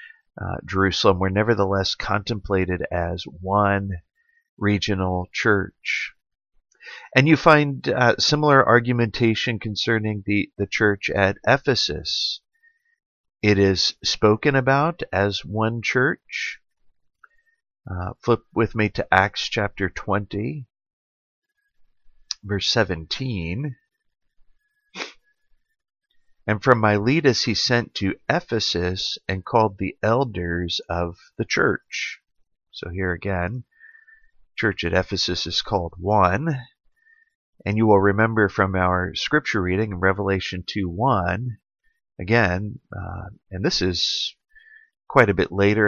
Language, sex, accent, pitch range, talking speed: English, male, American, 95-135 Hz, 105 wpm